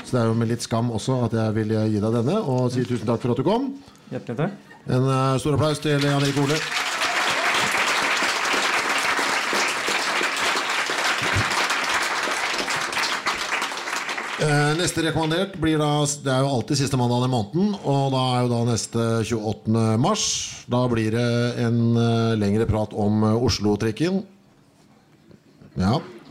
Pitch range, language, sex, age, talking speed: 110-135 Hz, English, male, 50-69, 130 wpm